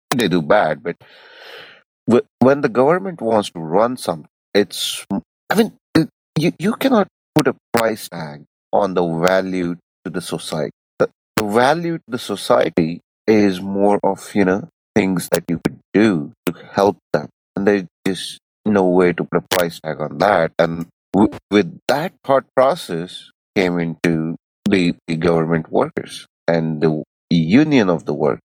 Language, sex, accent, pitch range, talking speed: English, male, Indian, 85-125 Hz, 155 wpm